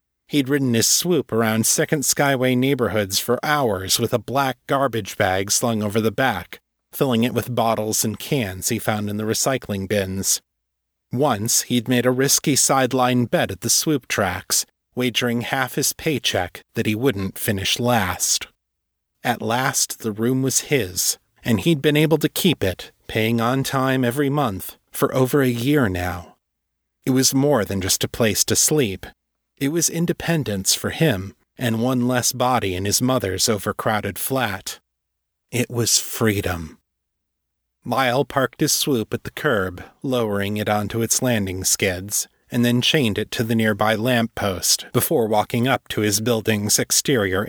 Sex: male